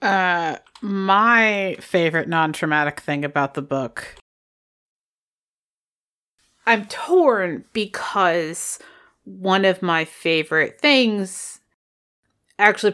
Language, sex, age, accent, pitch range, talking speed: English, female, 30-49, American, 175-235 Hz, 80 wpm